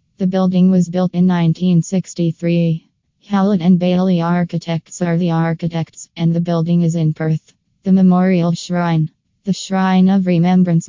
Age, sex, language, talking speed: 20-39, female, English, 145 wpm